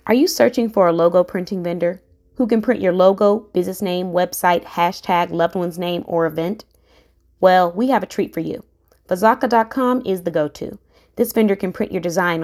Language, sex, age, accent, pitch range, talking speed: English, female, 20-39, American, 175-220 Hz, 190 wpm